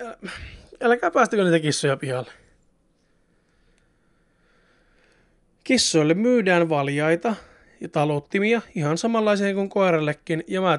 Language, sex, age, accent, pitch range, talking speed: Finnish, male, 20-39, native, 155-200 Hz, 90 wpm